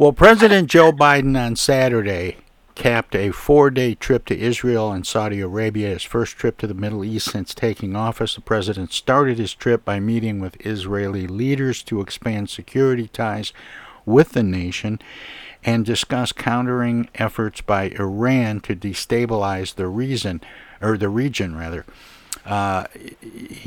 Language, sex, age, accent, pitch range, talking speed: English, male, 60-79, American, 95-115 Hz, 145 wpm